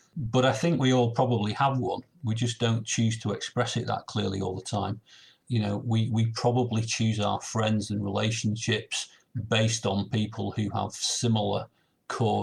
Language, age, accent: English, 40-59, British